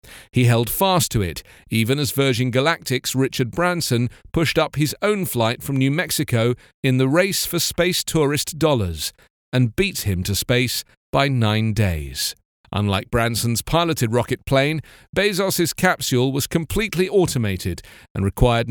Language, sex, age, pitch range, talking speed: English, male, 40-59, 110-160 Hz, 150 wpm